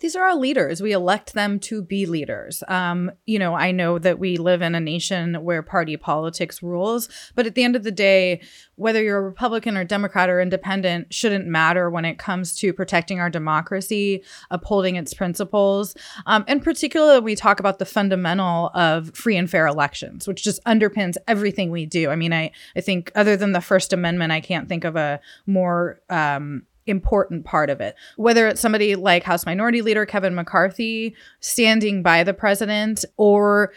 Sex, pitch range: female, 170-210 Hz